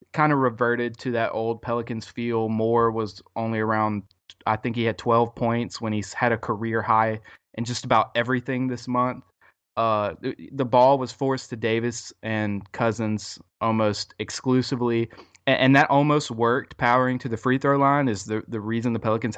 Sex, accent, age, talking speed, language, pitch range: male, American, 20-39, 185 wpm, English, 110-125 Hz